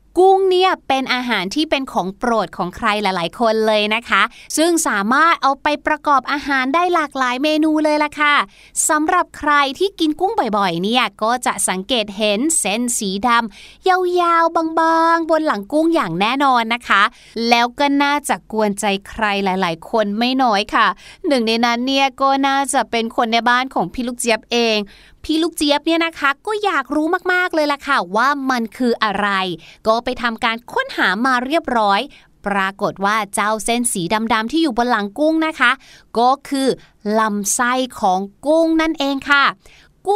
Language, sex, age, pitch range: Thai, female, 20-39, 215-305 Hz